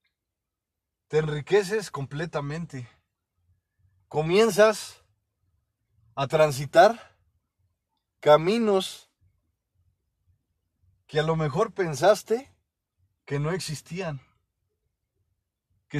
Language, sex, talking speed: Spanish, male, 60 wpm